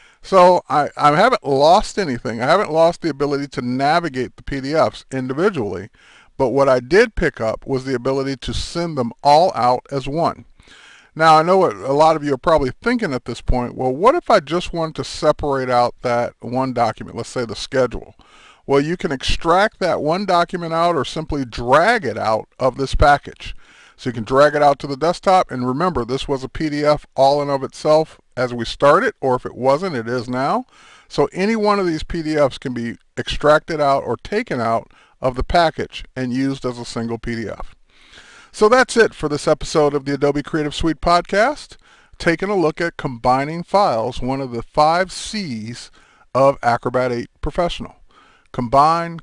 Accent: American